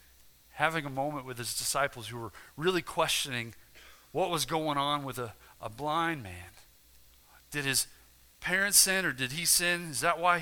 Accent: American